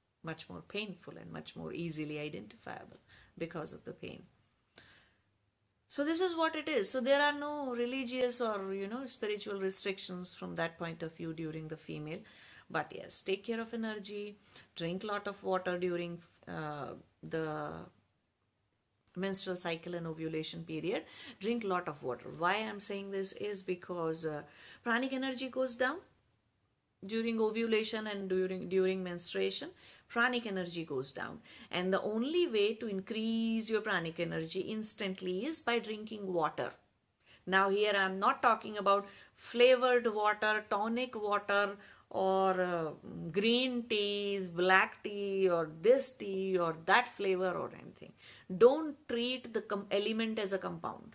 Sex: female